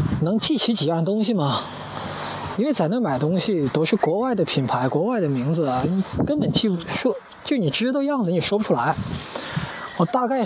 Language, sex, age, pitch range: Chinese, male, 20-39, 150-205 Hz